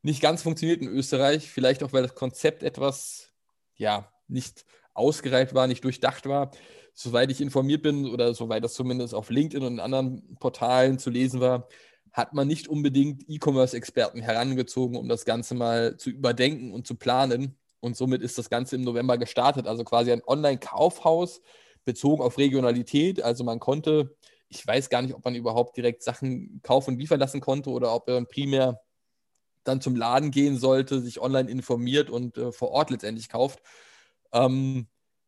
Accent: German